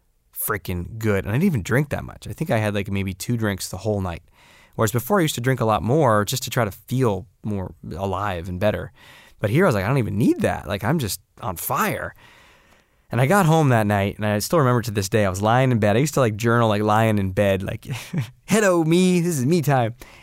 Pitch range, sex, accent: 100-130 Hz, male, American